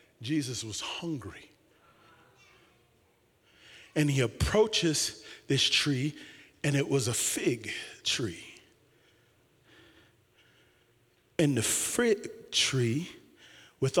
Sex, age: male, 40-59